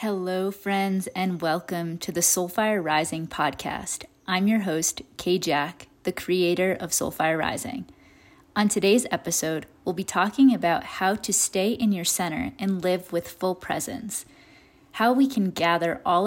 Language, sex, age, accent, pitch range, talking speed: English, female, 30-49, American, 170-205 Hz, 155 wpm